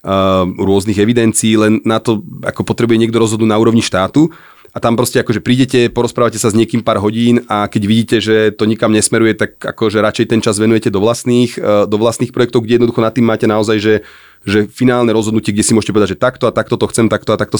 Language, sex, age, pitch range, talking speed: Slovak, male, 30-49, 105-115 Hz, 225 wpm